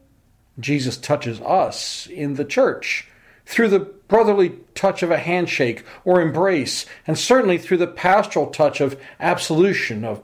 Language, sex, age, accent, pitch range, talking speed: English, male, 50-69, American, 130-190 Hz, 140 wpm